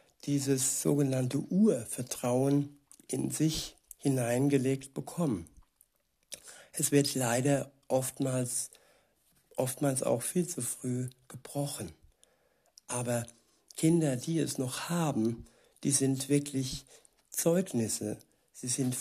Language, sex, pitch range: German, male, 125-145 Hz